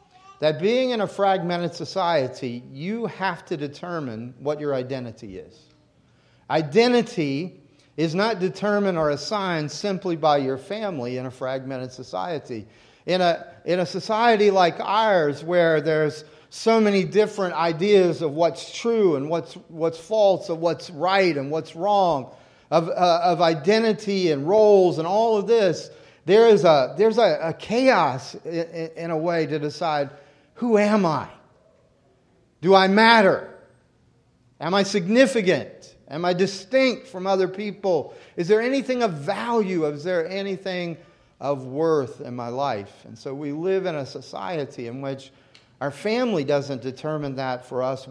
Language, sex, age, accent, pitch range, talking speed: English, male, 40-59, American, 140-200 Hz, 150 wpm